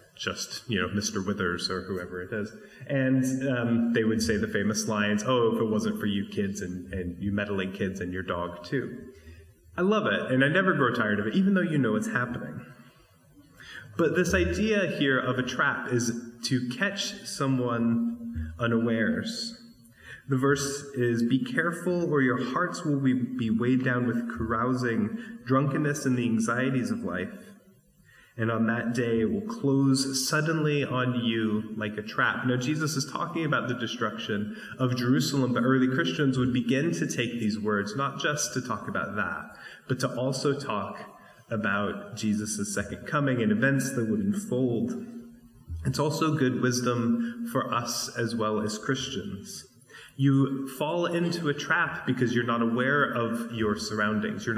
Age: 30-49